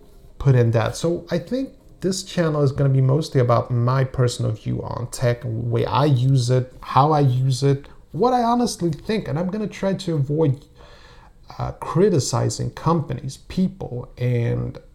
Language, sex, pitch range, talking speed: English, male, 120-145 Hz, 175 wpm